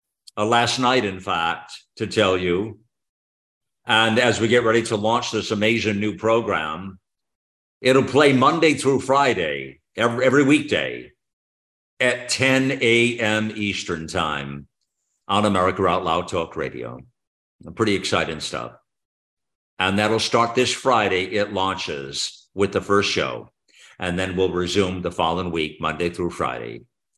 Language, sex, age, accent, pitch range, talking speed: English, male, 50-69, American, 95-115 Hz, 135 wpm